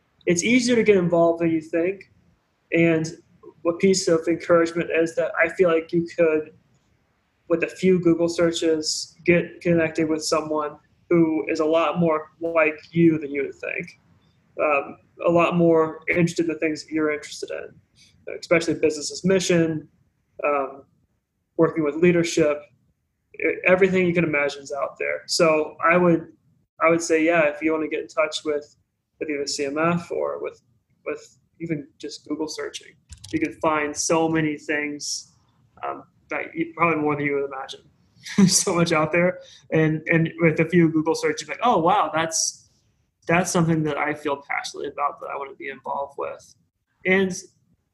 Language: English